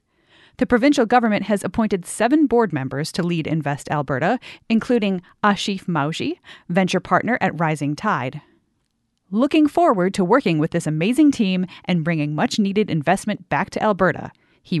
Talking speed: 145 wpm